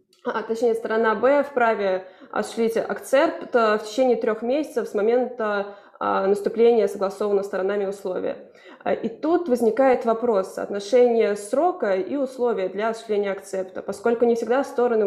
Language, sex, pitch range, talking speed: Russian, female, 210-255 Hz, 125 wpm